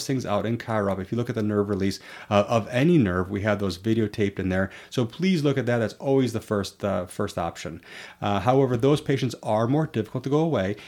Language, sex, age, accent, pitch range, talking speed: English, male, 30-49, American, 100-150 Hz, 230 wpm